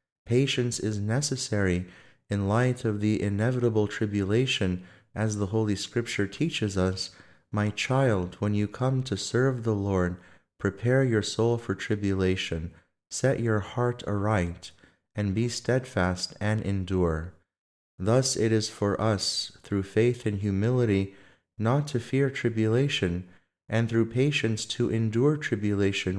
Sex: male